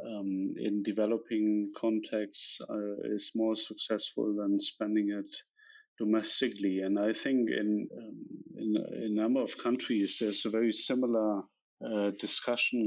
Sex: male